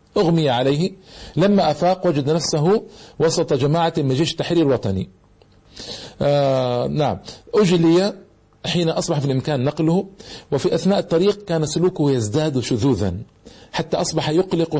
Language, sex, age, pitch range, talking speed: Arabic, male, 50-69, 130-175 Hz, 115 wpm